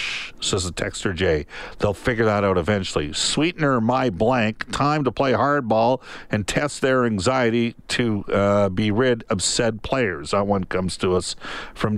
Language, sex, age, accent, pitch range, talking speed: English, male, 50-69, American, 110-135 Hz, 165 wpm